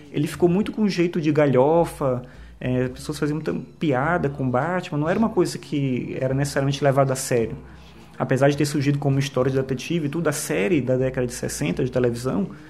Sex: male